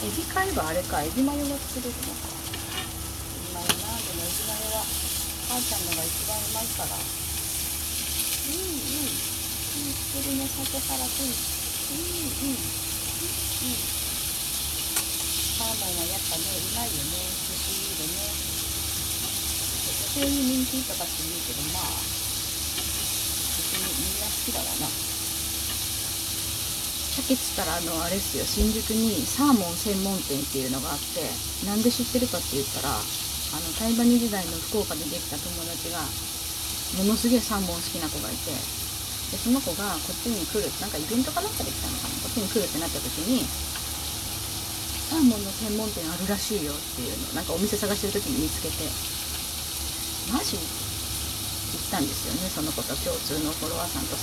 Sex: female